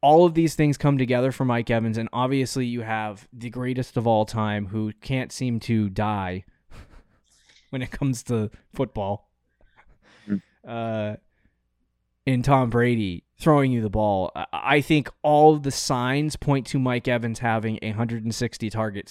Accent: American